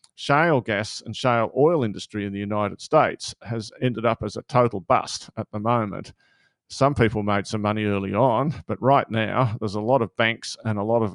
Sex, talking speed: male, 210 wpm